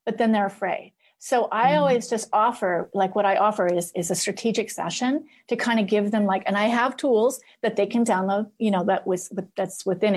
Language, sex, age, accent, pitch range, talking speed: English, female, 40-59, American, 195-235 Hz, 225 wpm